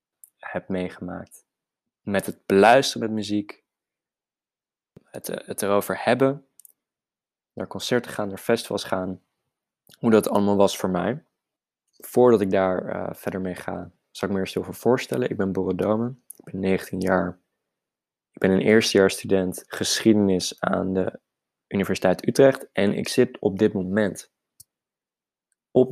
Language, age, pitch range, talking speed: Dutch, 20-39, 95-105 Hz, 140 wpm